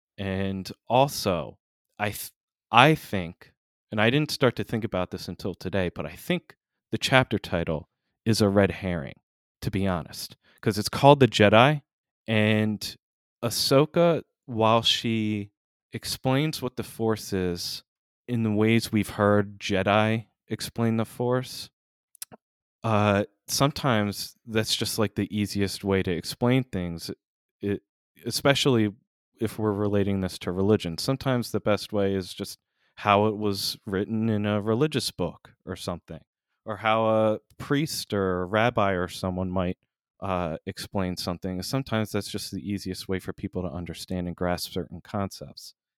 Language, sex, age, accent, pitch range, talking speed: English, male, 20-39, American, 90-110 Hz, 145 wpm